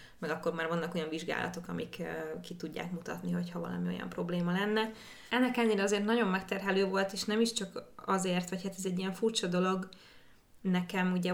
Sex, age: female, 20-39